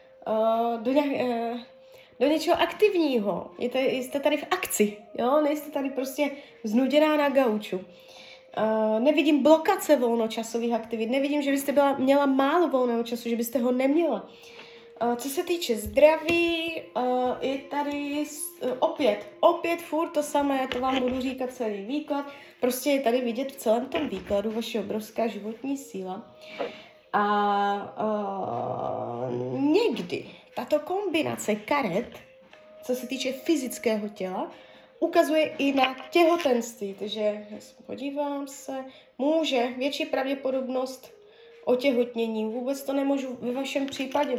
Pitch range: 235-300 Hz